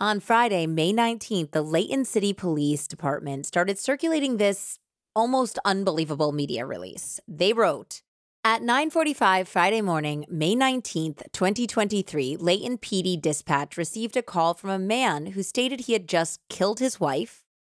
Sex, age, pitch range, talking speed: female, 30-49, 160-225 Hz, 145 wpm